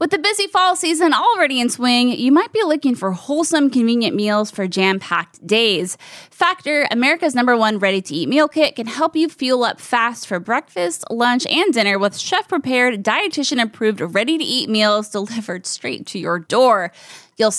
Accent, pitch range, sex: American, 210-295 Hz, female